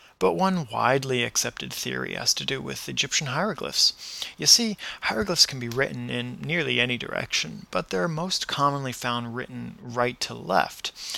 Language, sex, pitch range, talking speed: English, male, 120-150 Hz, 160 wpm